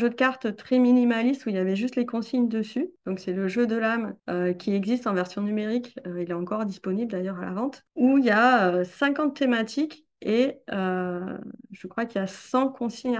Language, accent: French, French